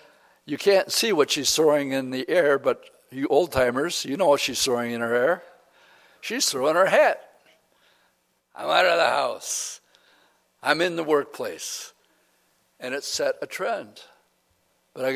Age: 60-79